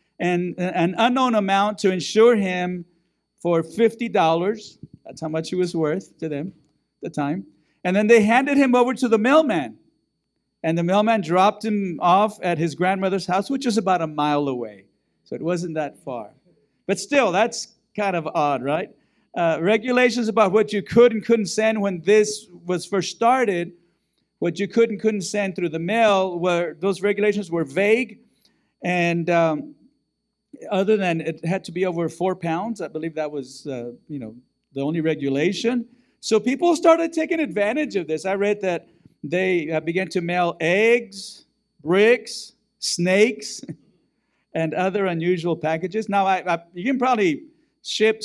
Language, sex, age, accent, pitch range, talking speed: English, male, 50-69, American, 165-220 Hz, 165 wpm